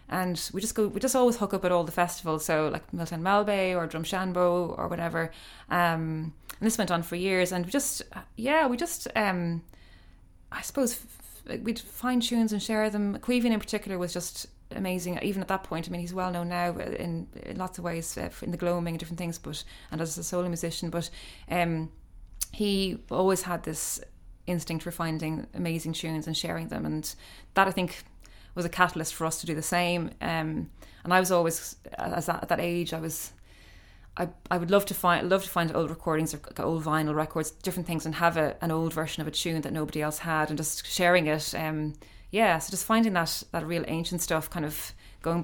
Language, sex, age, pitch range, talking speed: English, female, 20-39, 155-180 Hz, 220 wpm